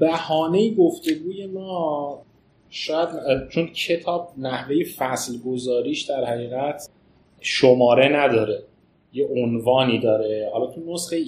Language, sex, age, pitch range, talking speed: Persian, male, 30-49, 120-155 Hz, 100 wpm